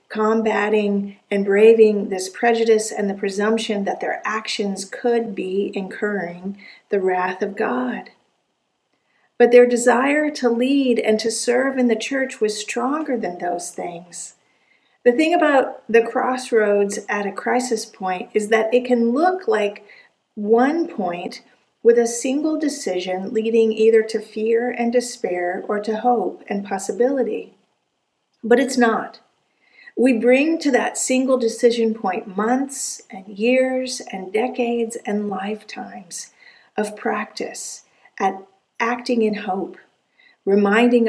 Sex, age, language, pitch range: female, 50-69, English, 200-245 Hz